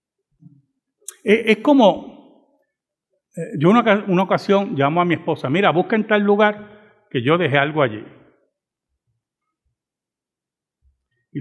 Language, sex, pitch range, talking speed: Spanish, male, 155-260 Hz, 115 wpm